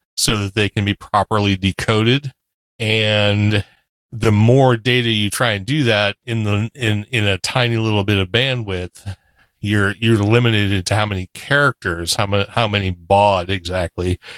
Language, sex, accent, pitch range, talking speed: English, male, American, 95-115 Hz, 165 wpm